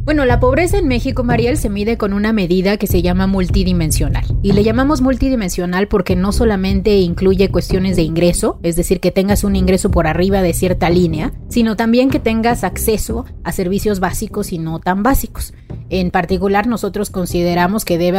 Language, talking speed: Spanish, 180 wpm